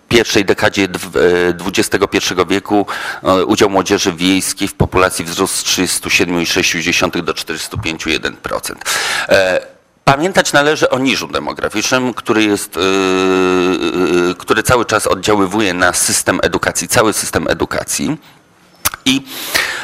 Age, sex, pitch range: 40-59, male, 95-120 Hz